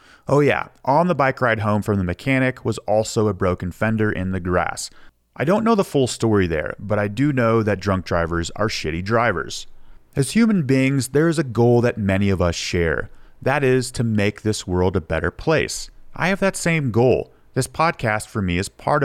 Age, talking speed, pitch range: 30-49, 210 wpm, 100-135 Hz